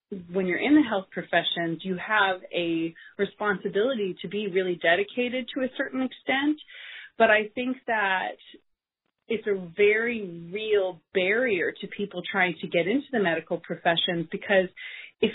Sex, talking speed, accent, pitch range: female, 150 wpm, American, 180-225 Hz